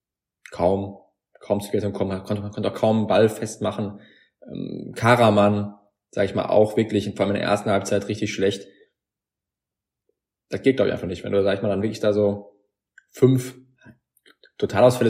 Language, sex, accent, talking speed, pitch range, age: German, male, German, 175 wpm, 100-115 Hz, 20-39